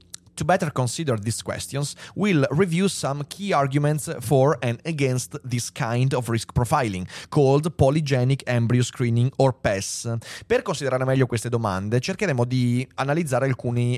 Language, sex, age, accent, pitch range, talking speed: Italian, male, 30-49, native, 115-145 Hz, 45 wpm